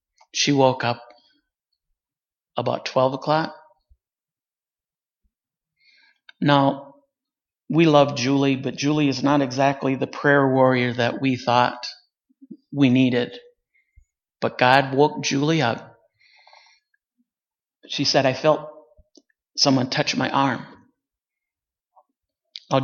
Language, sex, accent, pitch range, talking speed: English, male, American, 135-180 Hz, 95 wpm